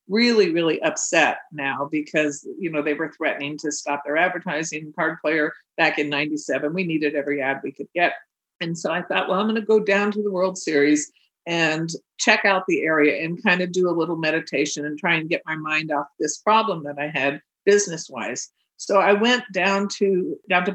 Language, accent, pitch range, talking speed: English, American, 150-180 Hz, 210 wpm